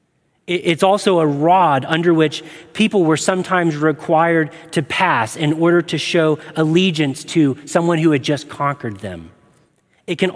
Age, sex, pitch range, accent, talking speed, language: 30-49, male, 140-185 Hz, American, 150 wpm, English